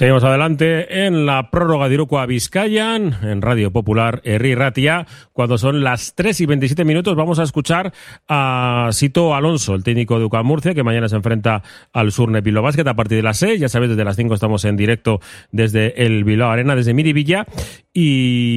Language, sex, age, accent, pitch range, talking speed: Spanish, male, 30-49, Spanish, 110-140 Hz, 185 wpm